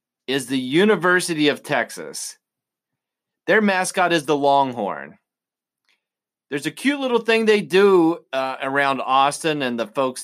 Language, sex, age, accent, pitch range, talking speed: English, male, 30-49, American, 135-185 Hz, 135 wpm